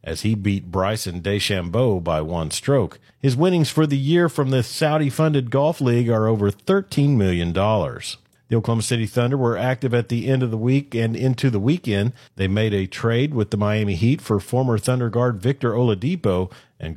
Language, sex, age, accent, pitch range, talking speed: English, male, 50-69, American, 100-125 Hz, 185 wpm